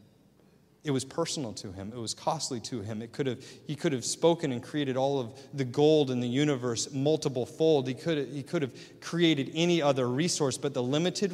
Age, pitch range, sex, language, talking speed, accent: 30-49, 125-165 Hz, male, English, 215 wpm, American